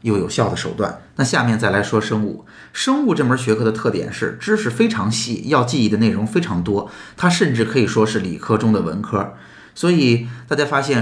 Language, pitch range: Chinese, 110-165 Hz